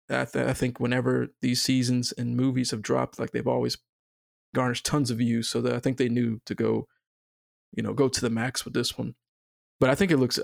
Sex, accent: male, American